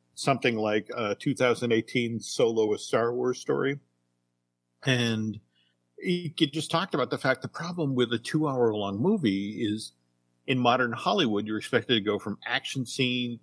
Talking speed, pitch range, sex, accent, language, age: 155 wpm, 100-135 Hz, male, American, English, 50-69